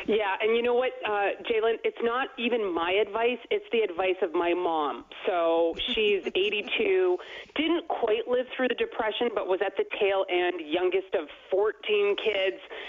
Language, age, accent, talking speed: English, 30-49, American, 170 wpm